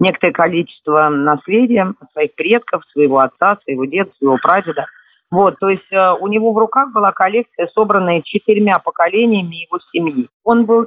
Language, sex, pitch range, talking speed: Russian, female, 160-220 Hz, 150 wpm